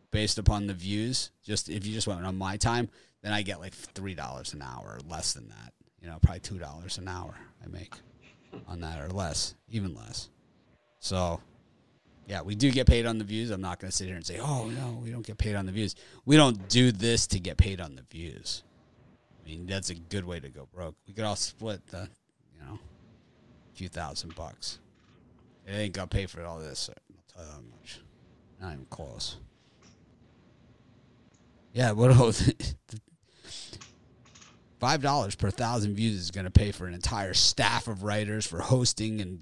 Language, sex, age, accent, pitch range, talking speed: English, male, 30-49, American, 90-110 Hz, 190 wpm